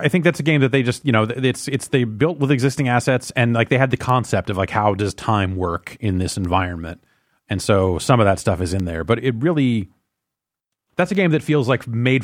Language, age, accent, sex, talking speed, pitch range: English, 30-49, American, male, 250 wpm, 95-130 Hz